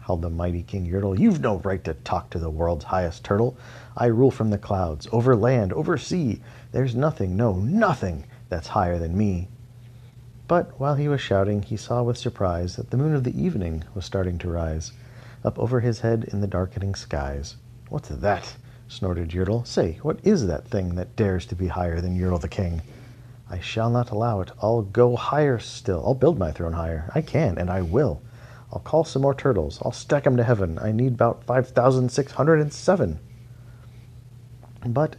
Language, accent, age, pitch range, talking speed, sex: English, American, 50-69, 95-120 Hz, 190 wpm, male